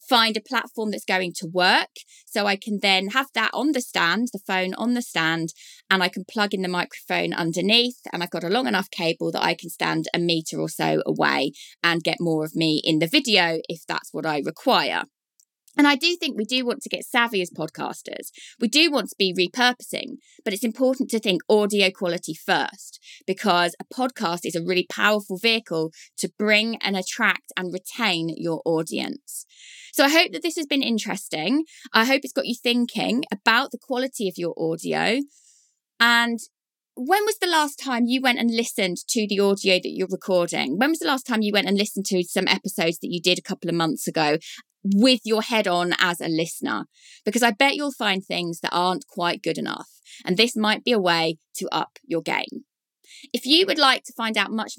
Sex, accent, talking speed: female, British, 210 wpm